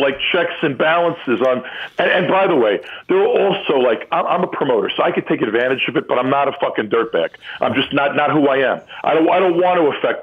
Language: English